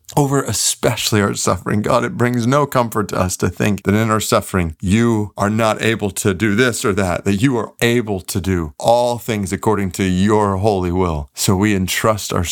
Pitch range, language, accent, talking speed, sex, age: 85-100 Hz, English, American, 205 wpm, male, 40-59